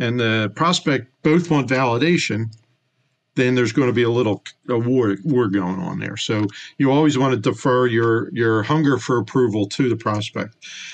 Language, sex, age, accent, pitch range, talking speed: English, male, 50-69, American, 110-140 Hz, 170 wpm